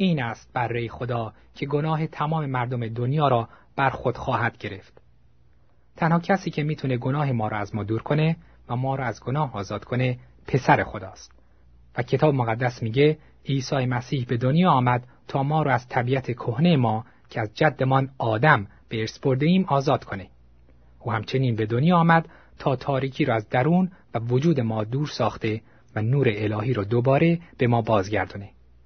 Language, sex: Persian, male